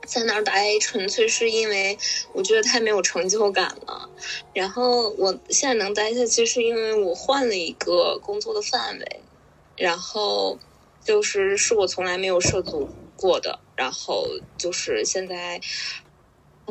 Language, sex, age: Chinese, female, 10-29